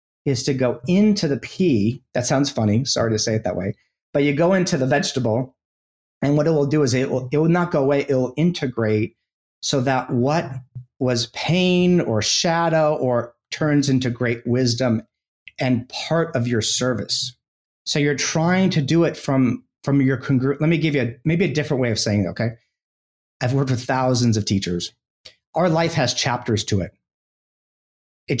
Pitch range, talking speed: 115-150 Hz, 185 wpm